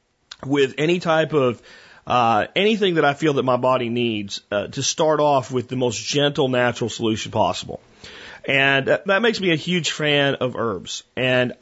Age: 40-59